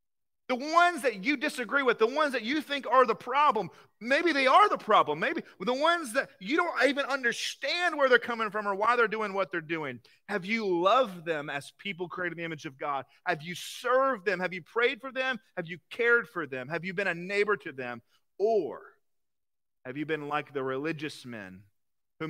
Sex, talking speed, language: male, 215 wpm, English